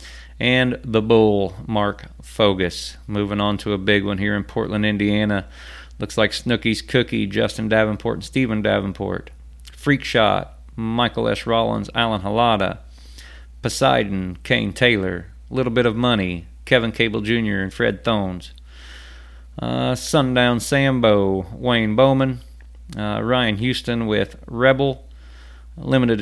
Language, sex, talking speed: English, male, 125 wpm